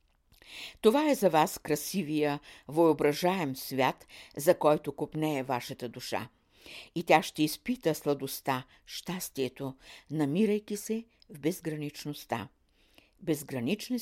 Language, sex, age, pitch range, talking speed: Bulgarian, female, 60-79, 135-180 Hz, 100 wpm